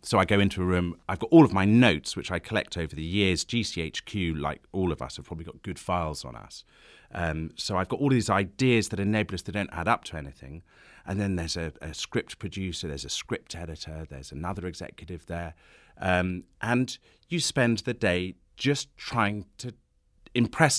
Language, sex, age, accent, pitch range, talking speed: English, male, 30-49, British, 90-120 Hz, 205 wpm